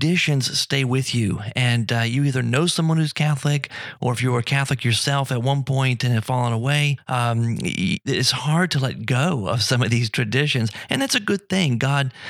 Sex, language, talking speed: male, English, 210 wpm